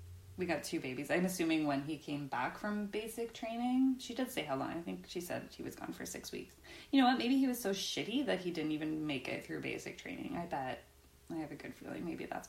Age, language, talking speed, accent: 20-39, English, 260 wpm, American